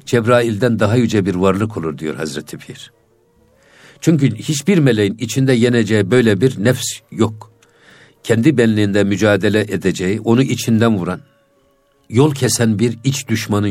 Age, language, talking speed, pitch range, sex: 60-79, Turkish, 130 wpm, 100-125 Hz, male